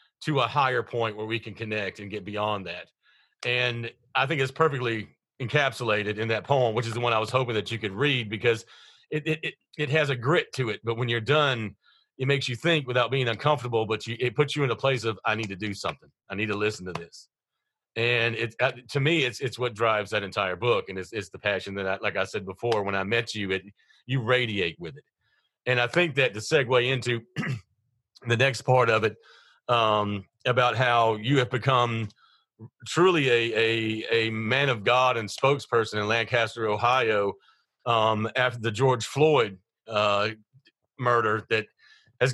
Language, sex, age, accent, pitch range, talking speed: English, male, 40-59, American, 110-135 Hz, 205 wpm